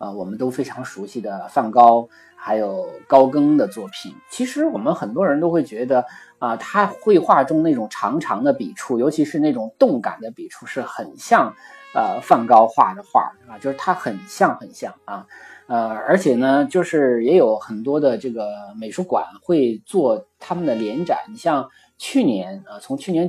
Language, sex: Chinese, male